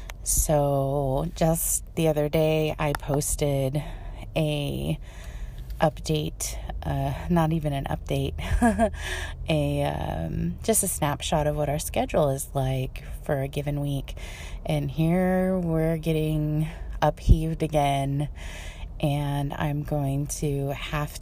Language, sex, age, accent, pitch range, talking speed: English, female, 20-39, American, 135-160 Hz, 115 wpm